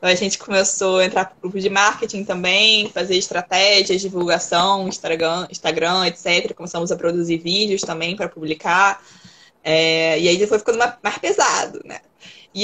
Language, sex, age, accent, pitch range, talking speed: Portuguese, female, 20-39, Brazilian, 175-215 Hz, 150 wpm